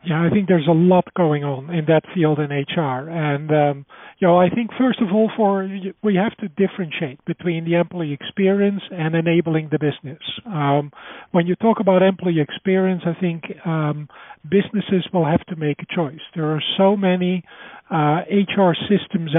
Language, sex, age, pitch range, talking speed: English, male, 50-69, 160-190 Hz, 185 wpm